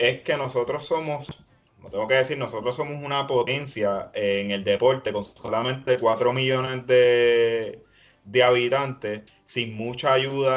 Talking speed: 140 wpm